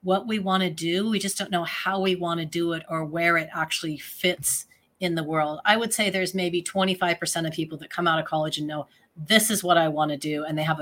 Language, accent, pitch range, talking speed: English, American, 160-200 Hz, 250 wpm